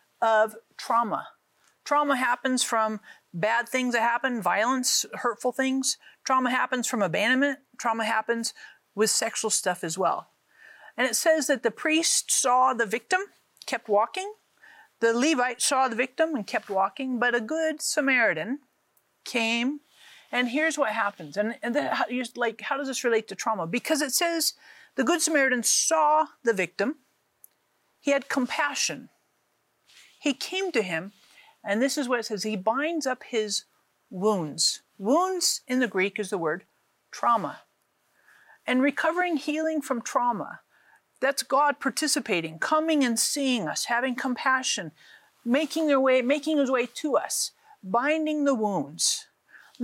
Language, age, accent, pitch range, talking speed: English, 50-69, American, 225-295 Hz, 150 wpm